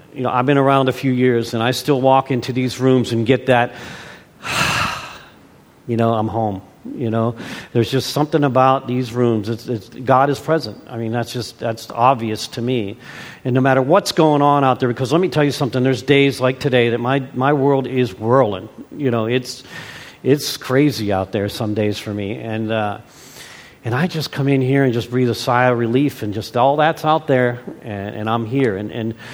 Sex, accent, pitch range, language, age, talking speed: male, American, 120-155 Hz, English, 50-69, 215 wpm